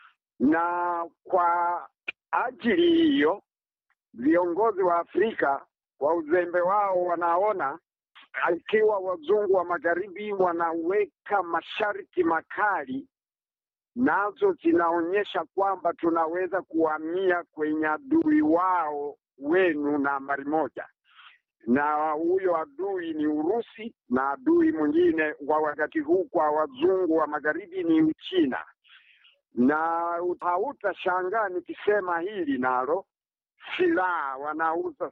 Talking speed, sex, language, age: 90 wpm, male, Swahili, 50-69